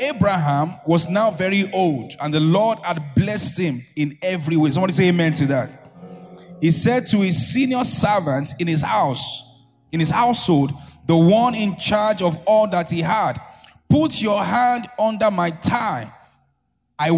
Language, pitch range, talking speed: English, 155-215 Hz, 165 wpm